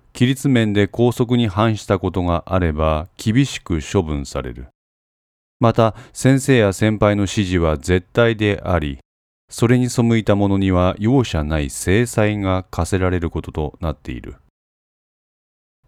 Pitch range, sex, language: 85-115 Hz, male, Japanese